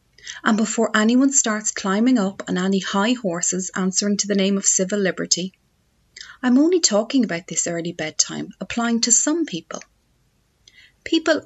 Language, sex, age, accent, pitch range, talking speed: English, female, 30-49, Irish, 165-235 Hz, 150 wpm